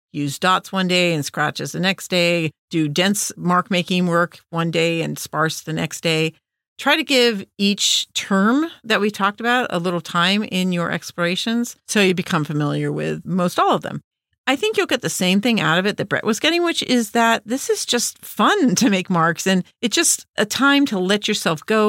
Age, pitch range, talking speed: 50-69, 165-220 Hz, 210 wpm